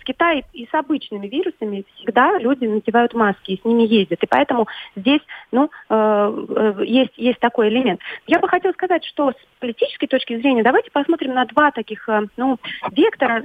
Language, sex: Russian, female